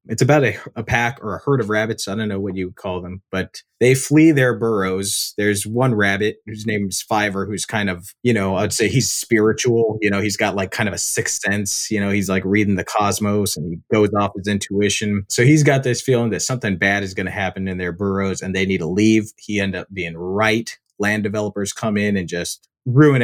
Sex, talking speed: male, 245 wpm